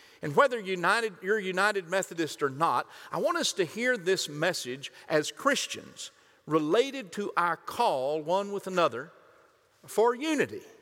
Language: English